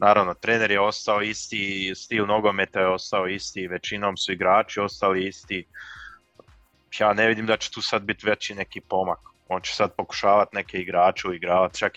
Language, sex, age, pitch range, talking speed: Croatian, male, 20-39, 90-105 Hz, 175 wpm